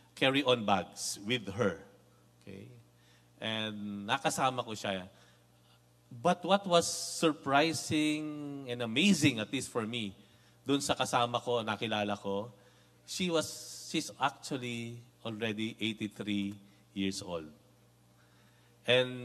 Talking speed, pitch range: 105 wpm, 100-135 Hz